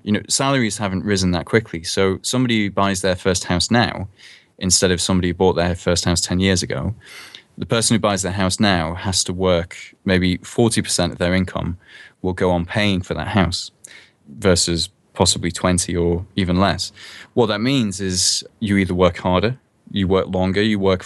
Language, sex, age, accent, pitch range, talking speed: English, male, 20-39, British, 90-105 Hz, 190 wpm